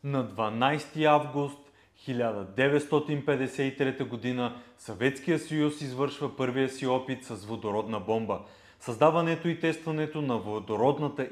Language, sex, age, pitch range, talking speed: Bulgarian, male, 30-49, 120-150 Hz, 95 wpm